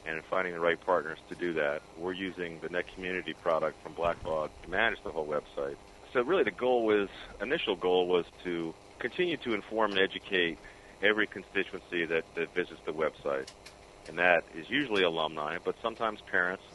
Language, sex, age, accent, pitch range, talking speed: English, male, 40-59, American, 85-100 Hz, 180 wpm